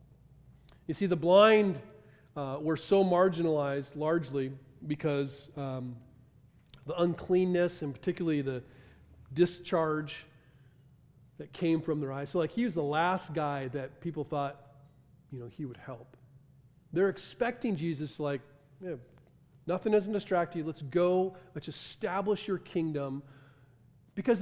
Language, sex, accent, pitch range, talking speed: English, male, American, 135-165 Hz, 130 wpm